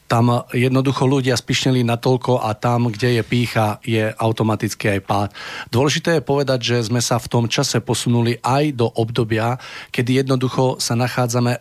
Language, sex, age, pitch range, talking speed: Slovak, male, 40-59, 105-125 Hz, 160 wpm